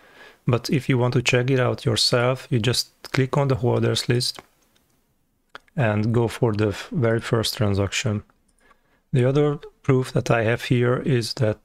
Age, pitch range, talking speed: 30-49, 110-130 Hz, 165 wpm